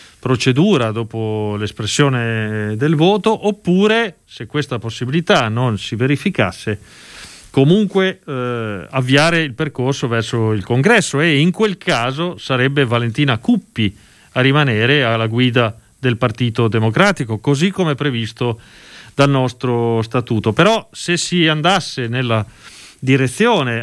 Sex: male